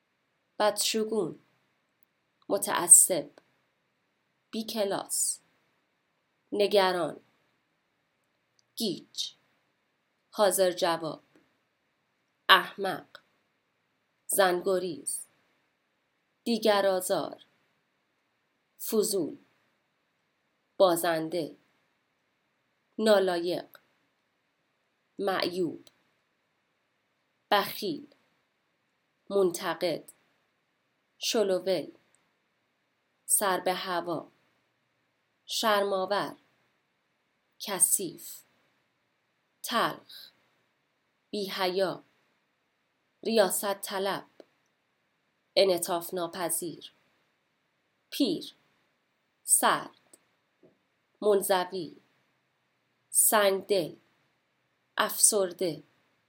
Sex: female